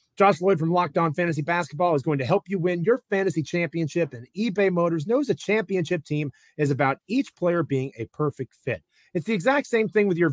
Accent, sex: American, male